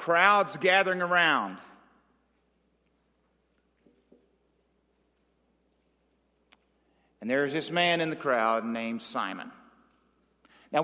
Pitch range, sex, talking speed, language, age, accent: 160-210 Hz, male, 70 wpm, English, 50-69, American